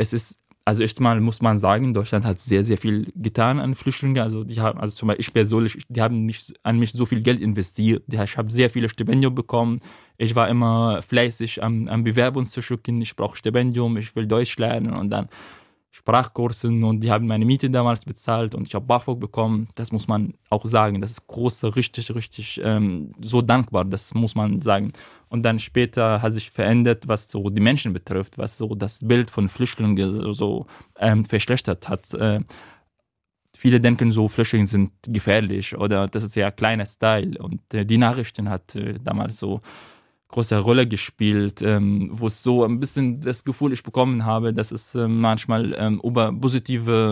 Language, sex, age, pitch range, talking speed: German, male, 20-39, 105-120 Hz, 190 wpm